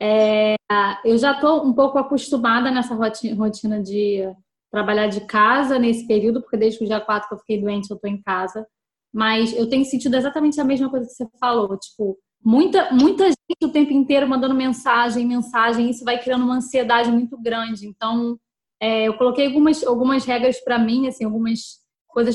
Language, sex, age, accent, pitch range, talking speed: Portuguese, female, 10-29, Brazilian, 220-265 Hz, 185 wpm